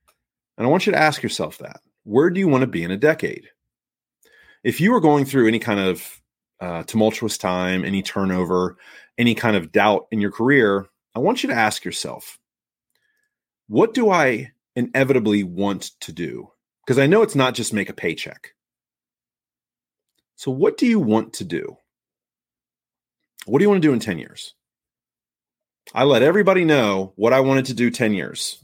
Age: 30-49